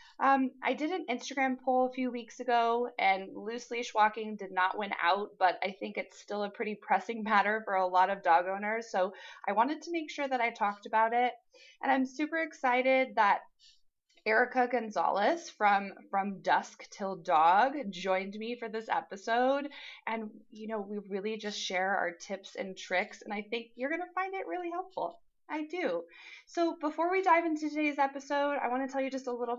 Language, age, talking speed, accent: English, 20-39, 200 wpm, American